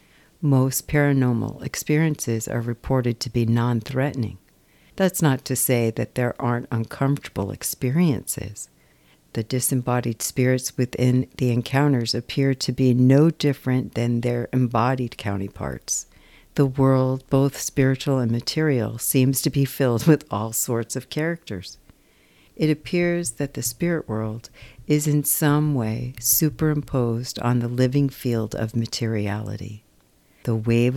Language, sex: English, female